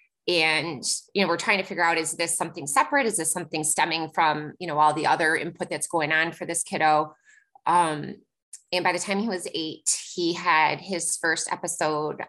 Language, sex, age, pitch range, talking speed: English, female, 20-39, 155-195 Hz, 205 wpm